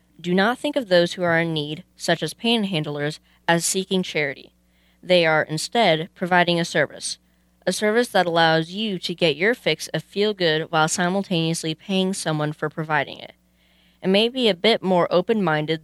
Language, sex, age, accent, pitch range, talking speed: English, female, 20-39, American, 155-200 Hz, 175 wpm